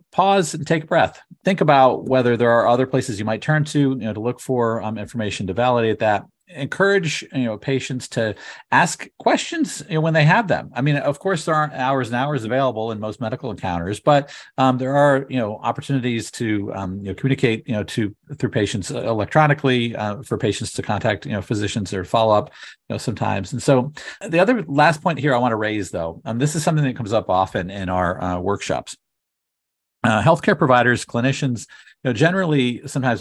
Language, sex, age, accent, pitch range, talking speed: English, male, 40-59, American, 105-140 Hz, 200 wpm